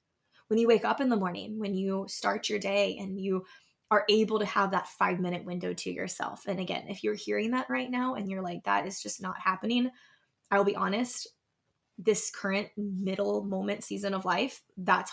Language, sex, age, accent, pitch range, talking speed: English, female, 20-39, American, 185-225 Hz, 200 wpm